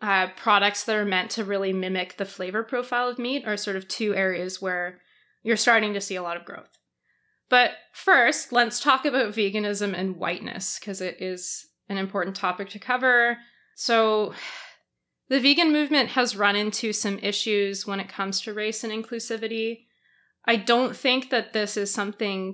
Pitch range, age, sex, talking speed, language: 195-230 Hz, 20-39, female, 175 wpm, English